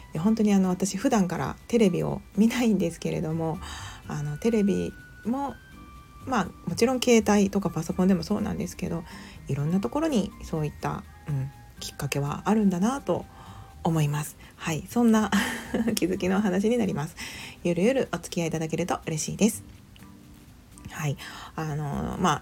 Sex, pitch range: female, 155-215 Hz